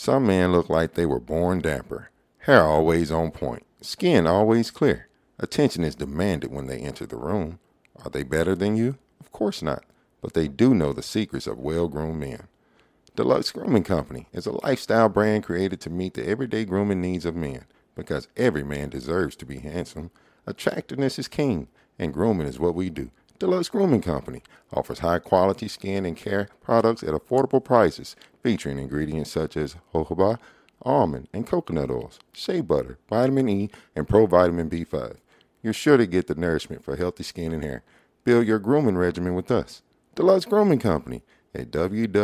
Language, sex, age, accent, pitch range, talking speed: English, male, 50-69, American, 80-110 Hz, 170 wpm